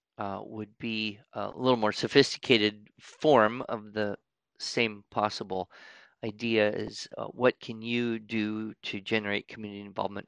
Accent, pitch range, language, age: American, 105-140 Hz, English, 40-59